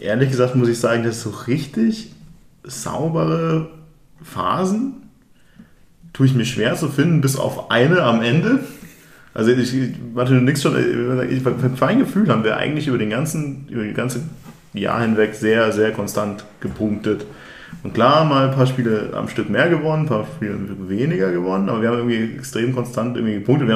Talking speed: 175 wpm